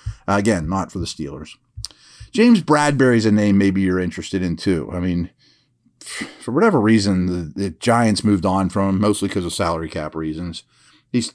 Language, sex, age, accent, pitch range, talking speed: English, male, 40-59, American, 100-125 Hz, 175 wpm